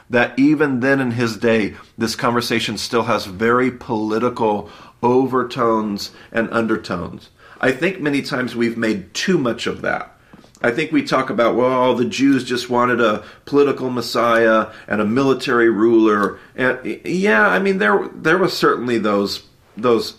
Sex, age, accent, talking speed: male, 40-59, American, 150 wpm